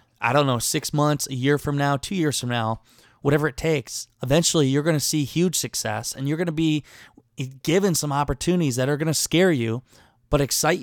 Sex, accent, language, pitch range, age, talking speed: male, American, English, 120-150 Hz, 20-39, 215 wpm